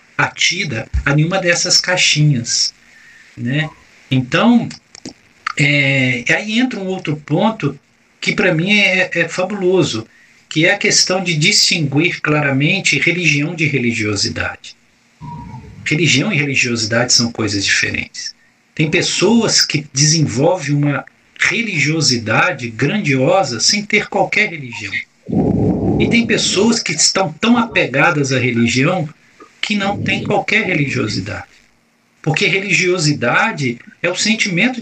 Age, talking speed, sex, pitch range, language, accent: 50-69, 110 wpm, male, 130-185 Hz, Portuguese, Brazilian